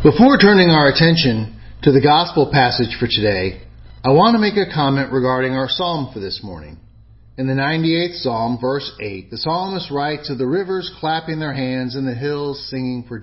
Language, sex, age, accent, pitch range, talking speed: English, male, 40-59, American, 110-165 Hz, 190 wpm